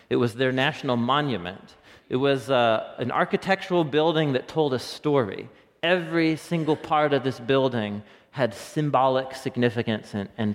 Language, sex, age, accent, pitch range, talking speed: English, male, 30-49, American, 120-175 Hz, 150 wpm